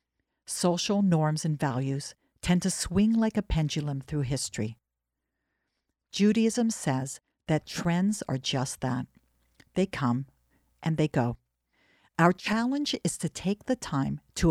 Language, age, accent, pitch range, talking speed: English, 60-79, American, 140-195 Hz, 130 wpm